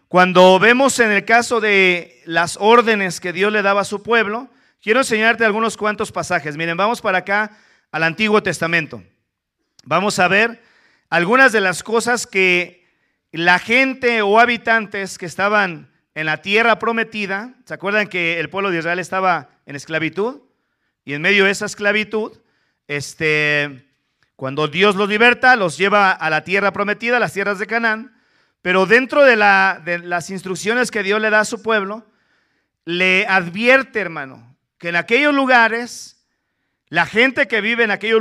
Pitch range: 175-225 Hz